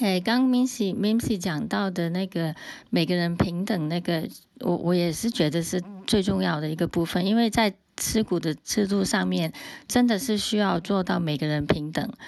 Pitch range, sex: 170-220 Hz, female